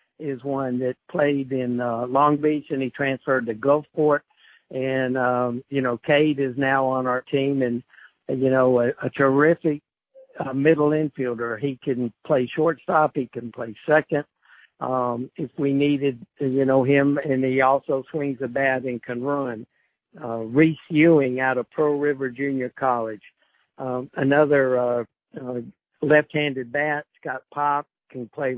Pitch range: 130-155 Hz